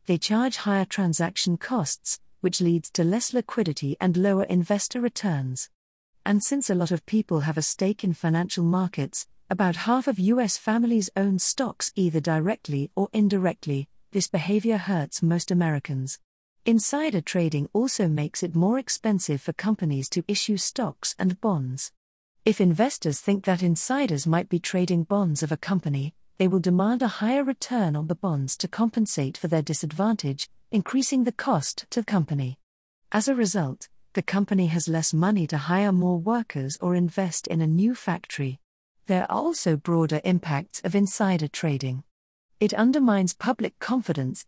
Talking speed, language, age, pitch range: 160 wpm, English, 40-59, 160-210 Hz